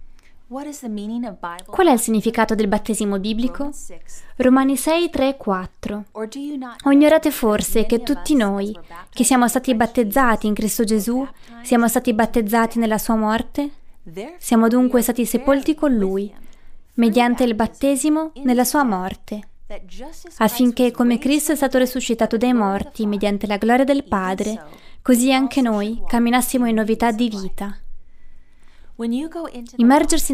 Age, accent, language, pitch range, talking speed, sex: 20-39, native, Italian, 215-260 Hz, 125 wpm, female